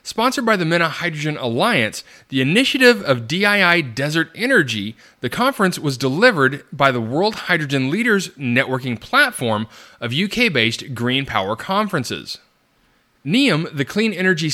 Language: English